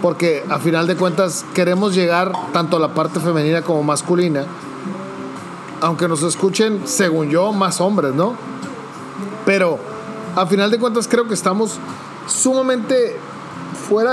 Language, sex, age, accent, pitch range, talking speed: Spanish, male, 40-59, Mexican, 170-215 Hz, 135 wpm